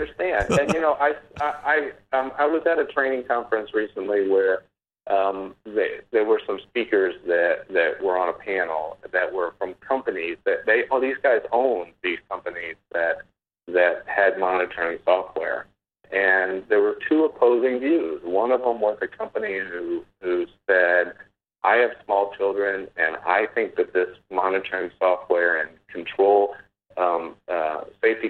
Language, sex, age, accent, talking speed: English, male, 50-69, American, 160 wpm